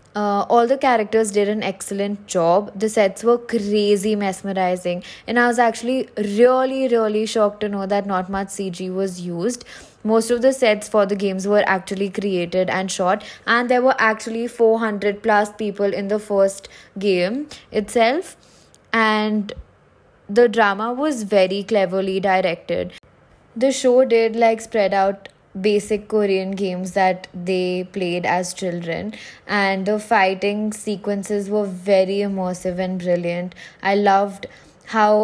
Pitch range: 190-220 Hz